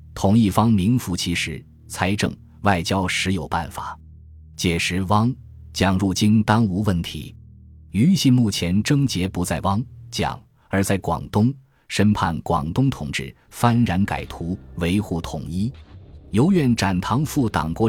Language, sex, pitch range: Chinese, male, 85-115 Hz